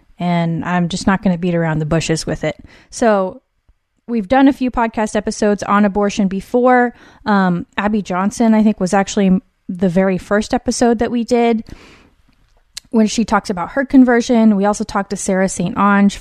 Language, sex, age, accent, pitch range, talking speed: English, female, 20-39, American, 175-215 Hz, 180 wpm